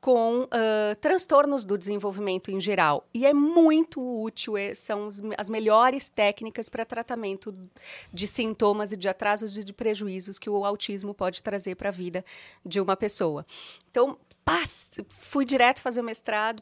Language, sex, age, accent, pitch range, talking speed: Portuguese, female, 30-49, Brazilian, 195-230 Hz, 150 wpm